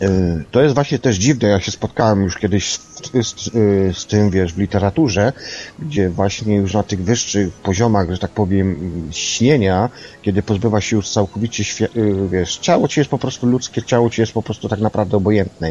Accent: native